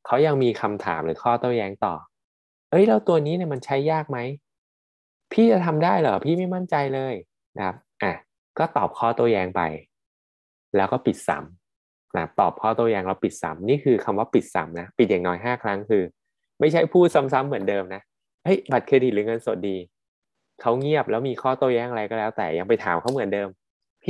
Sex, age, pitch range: male, 20-39, 90-130 Hz